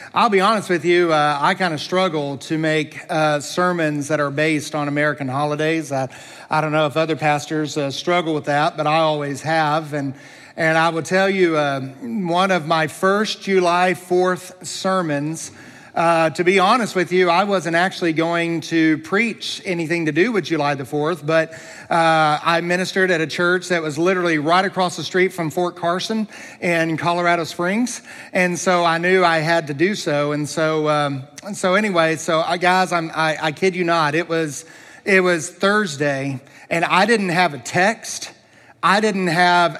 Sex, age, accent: male, 40-59, American